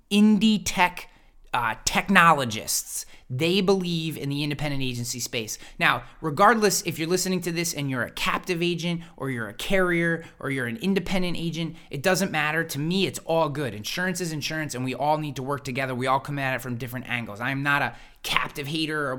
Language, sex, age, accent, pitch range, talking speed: English, male, 20-39, American, 135-175 Hz, 200 wpm